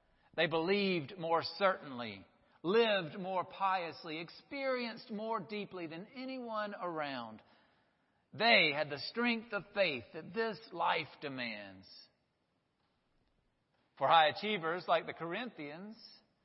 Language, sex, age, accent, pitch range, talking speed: English, male, 50-69, American, 165-220 Hz, 105 wpm